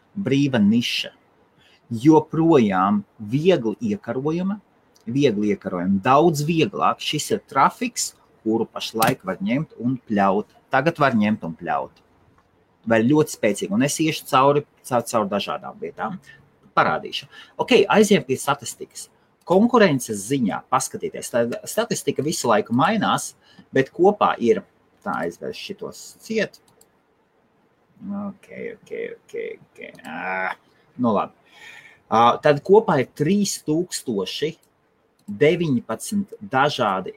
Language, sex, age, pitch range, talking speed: English, male, 30-49, 130-205 Hz, 110 wpm